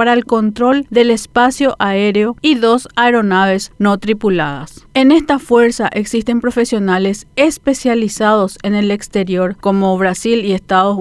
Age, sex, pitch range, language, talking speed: 40-59, female, 200-240 Hz, Spanish, 130 wpm